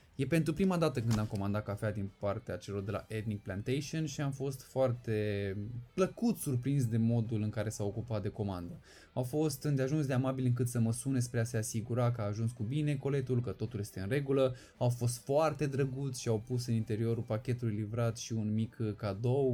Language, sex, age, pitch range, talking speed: Romanian, male, 20-39, 110-145 Hz, 210 wpm